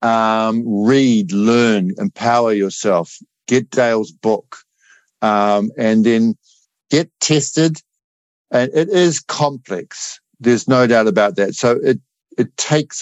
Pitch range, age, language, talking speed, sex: 110-130 Hz, 50-69, English, 120 wpm, male